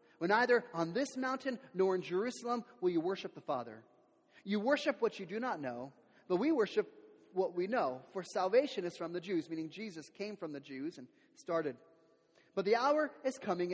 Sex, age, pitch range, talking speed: male, 30-49, 160-235 Hz, 195 wpm